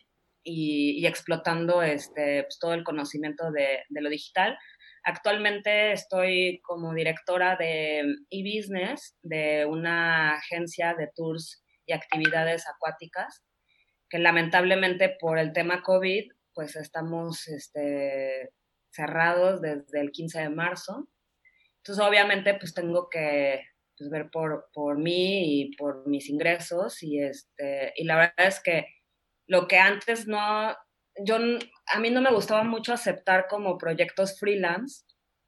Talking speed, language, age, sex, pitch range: 130 wpm, Spanish, 20-39, female, 155-190 Hz